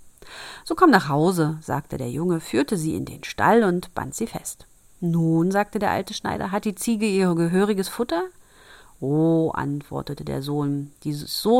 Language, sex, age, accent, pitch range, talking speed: German, female, 40-59, German, 155-210 Hz, 175 wpm